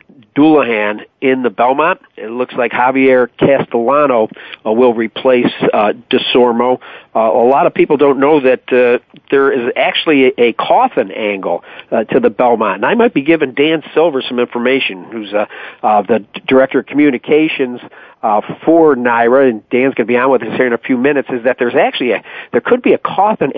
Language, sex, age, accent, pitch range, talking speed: English, male, 50-69, American, 120-150 Hz, 195 wpm